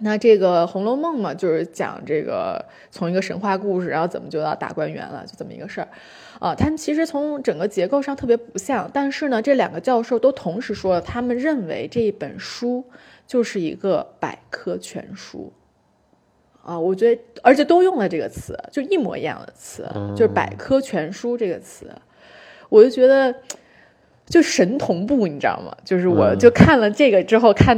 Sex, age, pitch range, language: female, 20-39, 190-270 Hz, Chinese